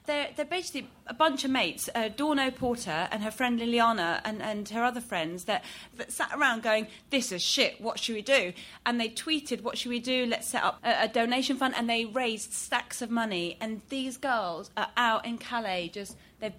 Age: 30-49